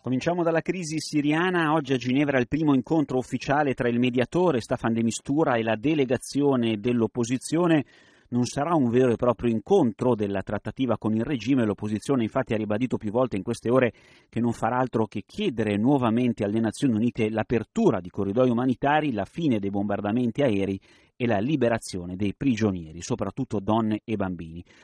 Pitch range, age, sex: 110-140 Hz, 30-49, male